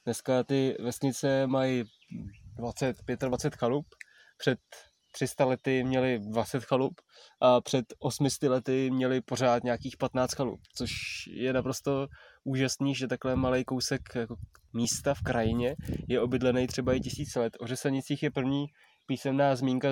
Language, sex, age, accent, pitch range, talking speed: Czech, male, 20-39, native, 125-135 Hz, 140 wpm